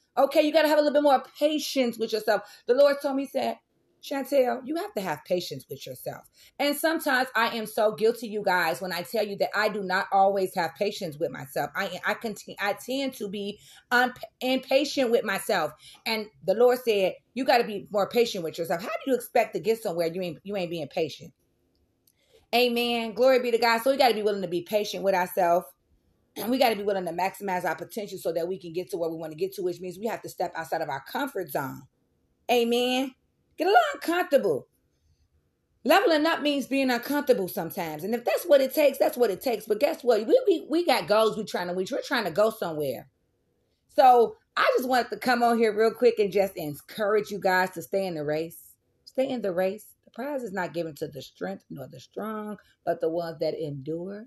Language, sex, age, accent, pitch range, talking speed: English, female, 30-49, American, 185-260 Hz, 230 wpm